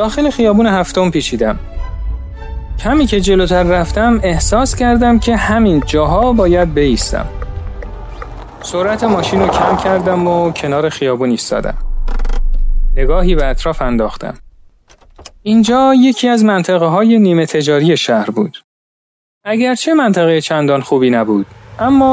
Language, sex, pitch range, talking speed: Persian, male, 115-190 Hz, 115 wpm